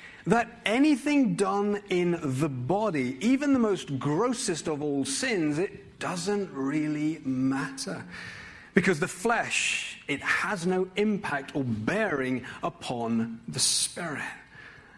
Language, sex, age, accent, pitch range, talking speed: English, male, 40-59, British, 135-205 Hz, 115 wpm